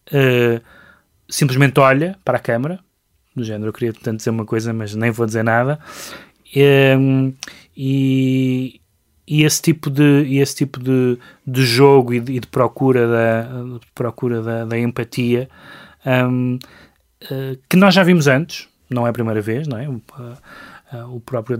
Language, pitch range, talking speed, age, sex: Portuguese, 115-135 Hz, 120 wpm, 20-39, male